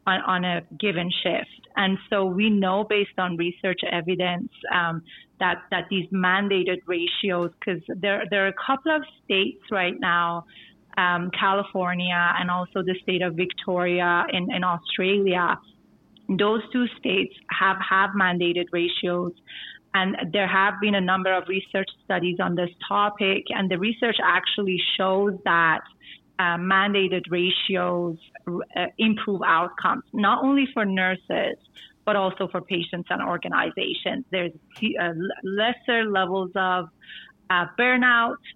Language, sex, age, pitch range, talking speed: English, female, 30-49, 180-205 Hz, 135 wpm